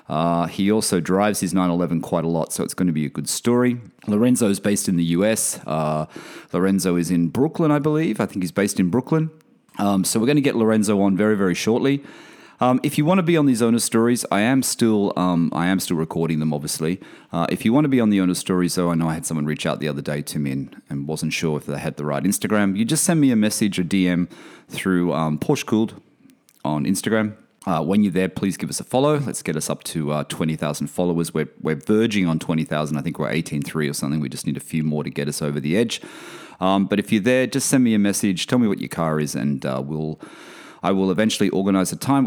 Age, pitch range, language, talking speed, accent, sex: 30-49, 80-110 Hz, English, 255 wpm, Australian, male